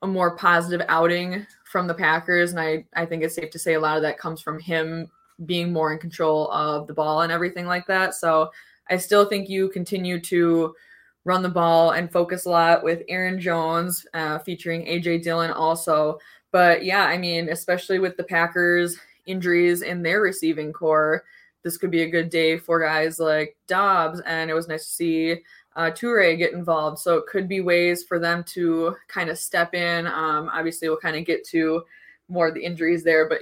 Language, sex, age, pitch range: English, female, 20-39, 160-180 Hz